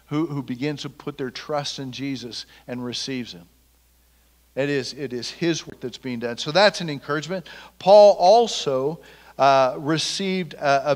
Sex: male